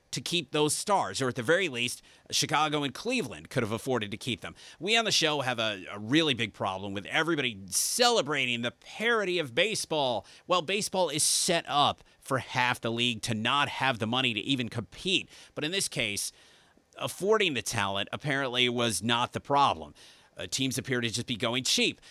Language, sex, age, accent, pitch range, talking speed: English, male, 30-49, American, 120-165 Hz, 195 wpm